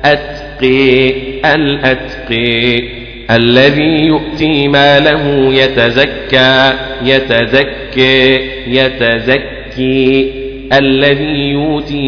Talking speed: 50 wpm